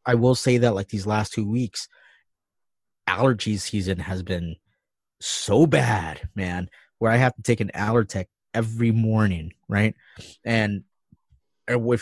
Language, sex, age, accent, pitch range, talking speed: English, male, 20-39, American, 100-130 Hz, 140 wpm